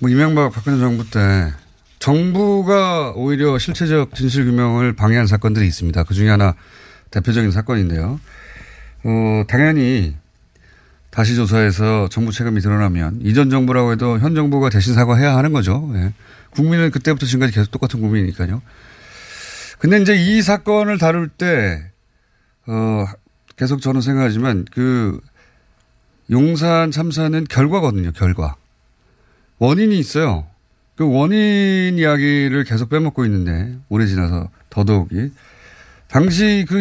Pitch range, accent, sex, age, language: 100-150 Hz, native, male, 30-49, Korean